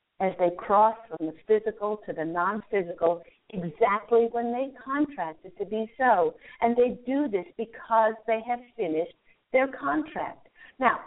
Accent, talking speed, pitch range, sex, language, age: American, 150 wpm, 180-235 Hz, female, English, 50-69